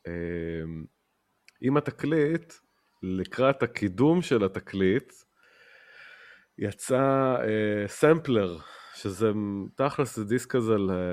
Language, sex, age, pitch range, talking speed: Hebrew, male, 30-49, 95-130 Hz, 70 wpm